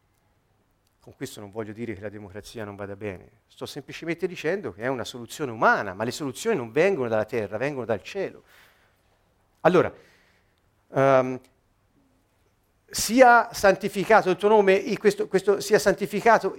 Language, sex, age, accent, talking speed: Italian, male, 50-69, native, 140 wpm